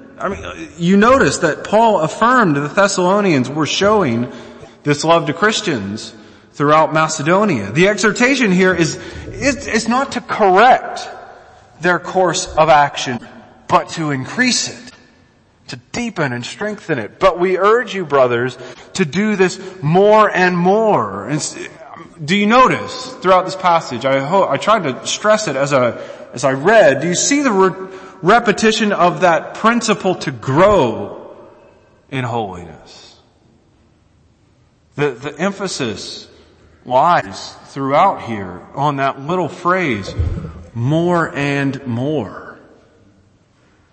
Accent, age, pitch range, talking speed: American, 30-49, 125-195 Hz, 130 wpm